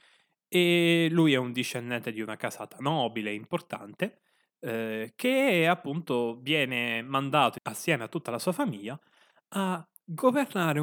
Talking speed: 125 wpm